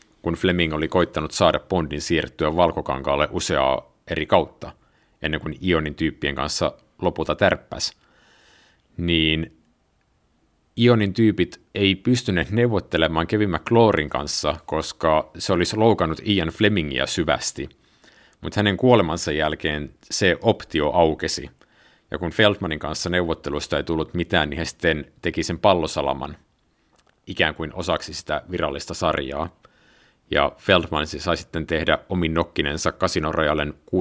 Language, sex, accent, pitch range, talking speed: Finnish, male, native, 75-95 Hz, 120 wpm